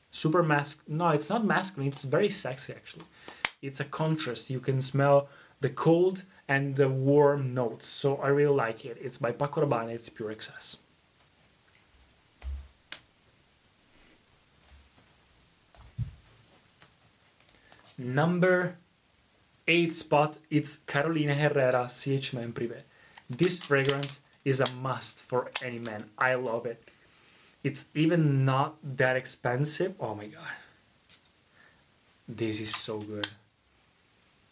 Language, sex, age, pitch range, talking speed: Italian, male, 20-39, 125-150 Hz, 115 wpm